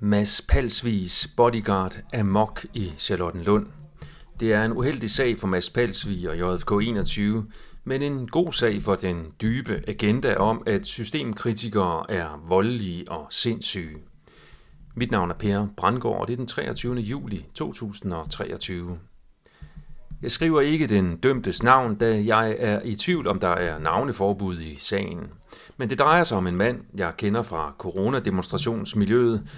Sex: male